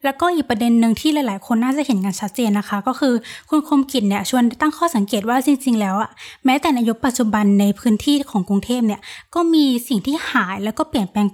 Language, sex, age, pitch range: Thai, female, 20-39, 215-275 Hz